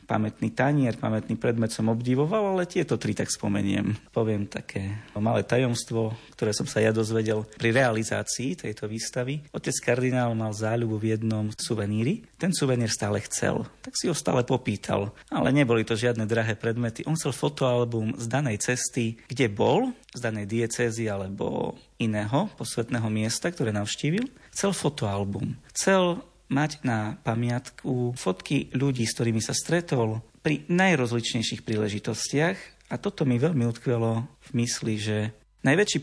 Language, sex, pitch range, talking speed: Slovak, male, 110-140 Hz, 145 wpm